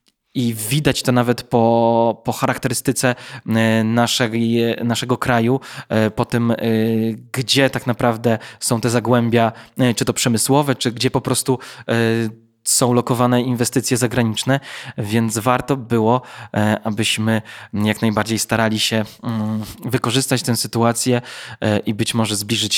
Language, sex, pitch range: Polish, male, 115-135 Hz